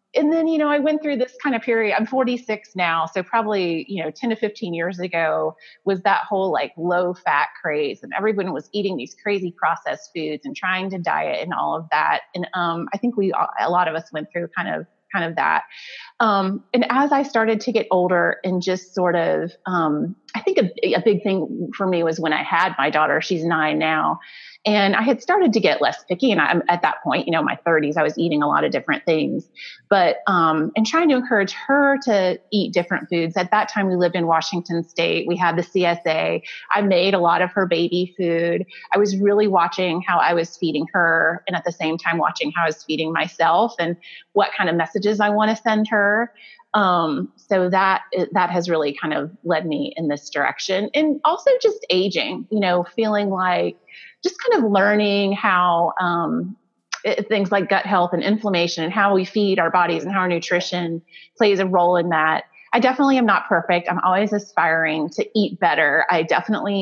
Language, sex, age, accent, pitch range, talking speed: English, female, 30-49, American, 170-215 Hz, 215 wpm